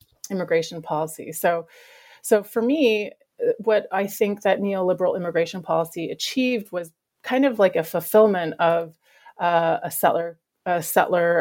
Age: 30-49